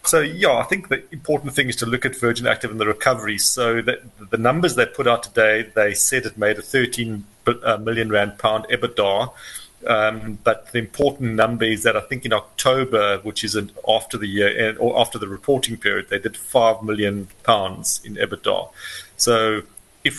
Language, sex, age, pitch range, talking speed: English, male, 40-59, 105-125 Hz, 195 wpm